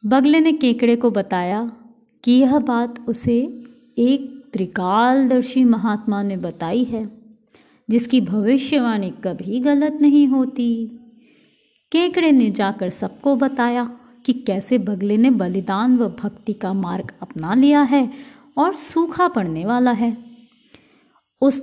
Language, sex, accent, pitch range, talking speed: Hindi, female, native, 215-280 Hz, 120 wpm